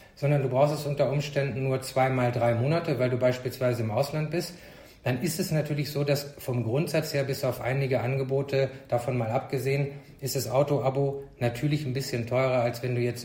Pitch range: 125-150 Hz